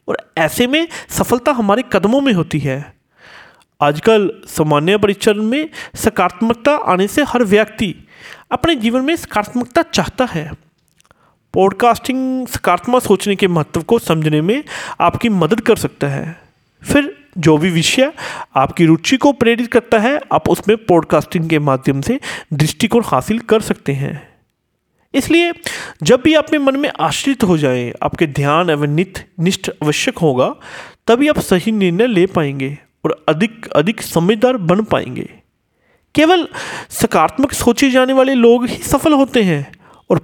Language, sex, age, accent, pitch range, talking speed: Hindi, male, 40-59, native, 165-250 Hz, 145 wpm